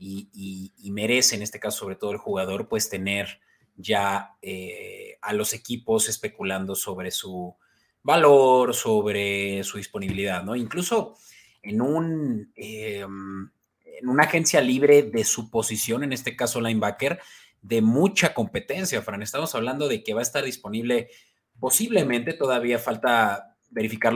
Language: Spanish